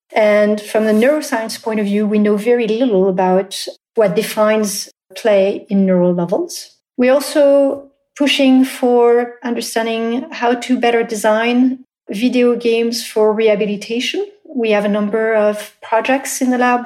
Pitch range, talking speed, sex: 210-250 Hz, 140 wpm, female